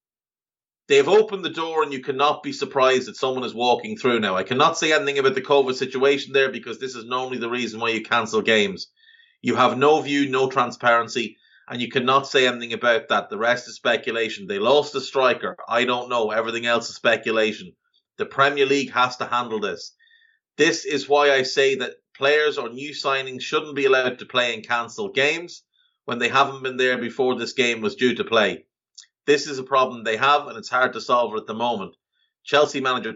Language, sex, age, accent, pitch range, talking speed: English, male, 30-49, Irish, 125-175 Hz, 210 wpm